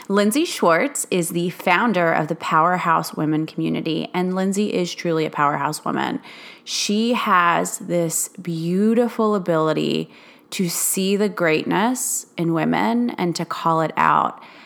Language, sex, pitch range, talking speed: English, female, 165-200 Hz, 135 wpm